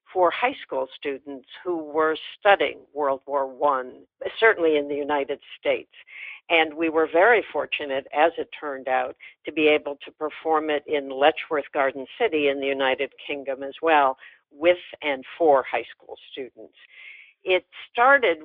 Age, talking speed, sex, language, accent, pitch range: 60-79, 155 wpm, female, English, American, 145-185 Hz